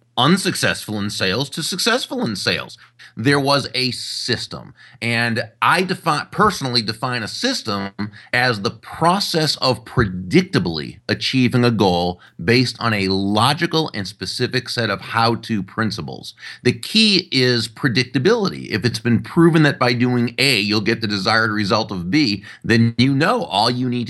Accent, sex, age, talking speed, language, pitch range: American, male, 30-49, 150 wpm, English, 110-140 Hz